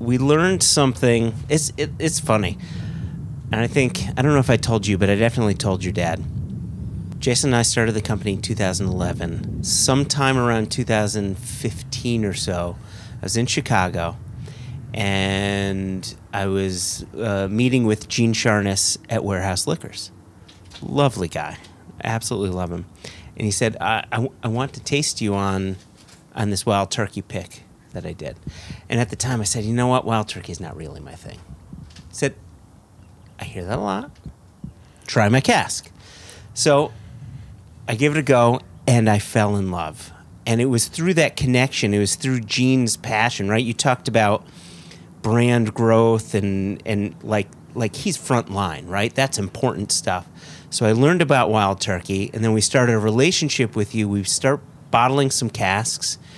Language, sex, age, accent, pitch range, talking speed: English, male, 30-49, American, 100-125 Hz, 170 wpm